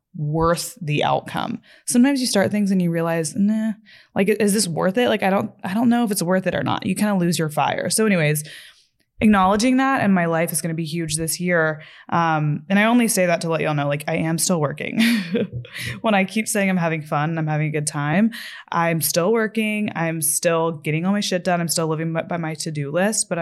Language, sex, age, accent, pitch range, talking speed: English, female, 20-39, American, 160-200 Hz, 240 wpm